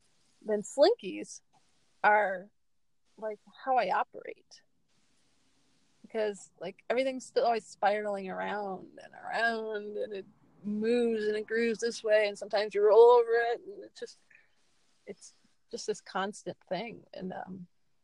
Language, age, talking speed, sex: English, 30-49, 135 wpm, female